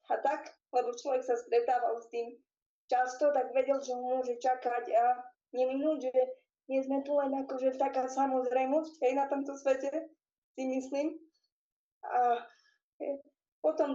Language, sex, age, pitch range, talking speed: Slovak, female, 20-39, 250-315 Hz, 145 wpm